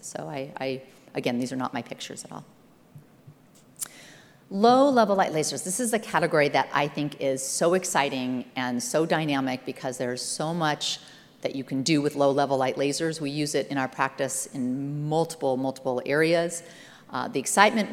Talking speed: 180 wpm